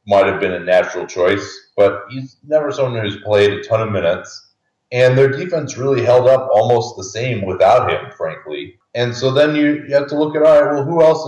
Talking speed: 225 wpm